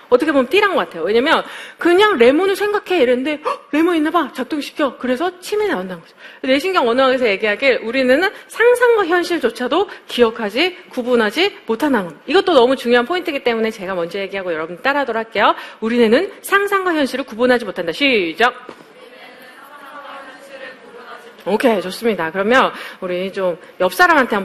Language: Korean